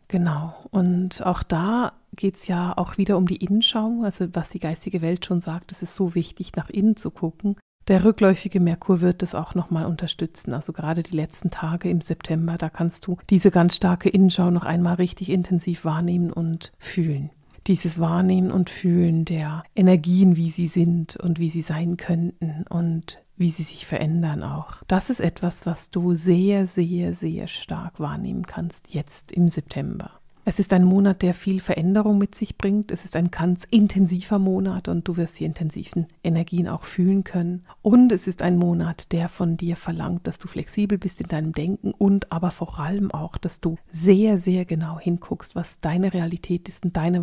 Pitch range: 165-190 Hz